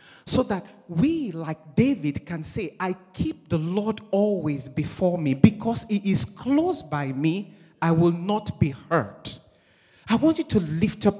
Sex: male